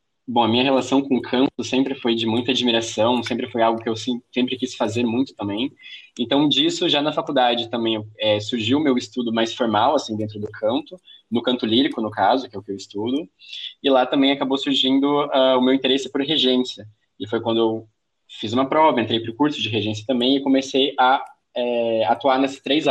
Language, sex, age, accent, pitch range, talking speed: Portuguese, male, 20-39, Brazilian, 110-140 Hz, 210 wpm